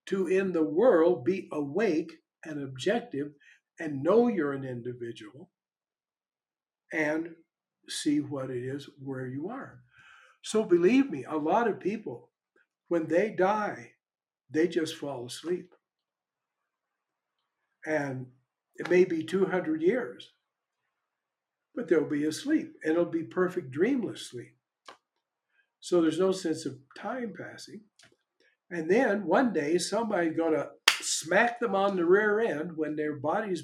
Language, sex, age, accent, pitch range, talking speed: English, male, 60-79, American, 145-195 Hz, 130 wpm